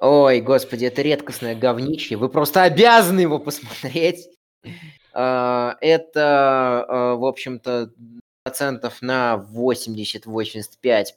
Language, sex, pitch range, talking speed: Russian, male, 115-150 Hz, 85 wpm